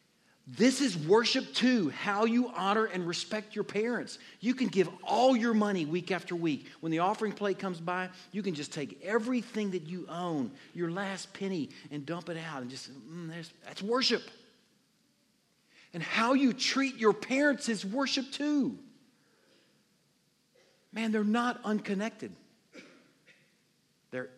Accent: American